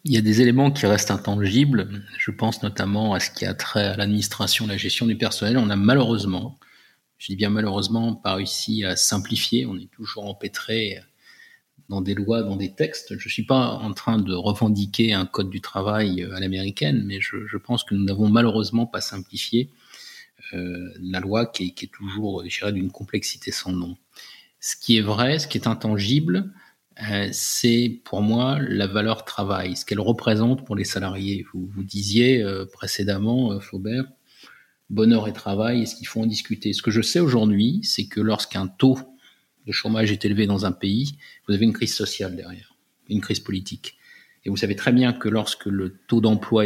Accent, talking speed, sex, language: French, 190 wpm, male, French